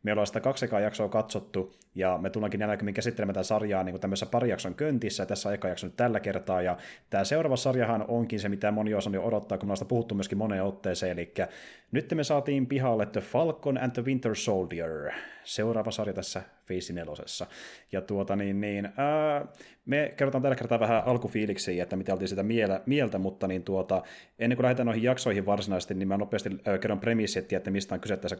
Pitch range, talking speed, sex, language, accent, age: 95-120 Hz, 195 wpm, male, Finnish, native, 30-49